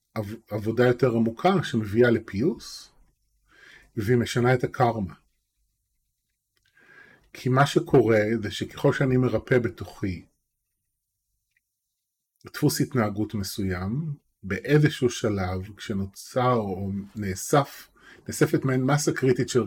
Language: Hebrew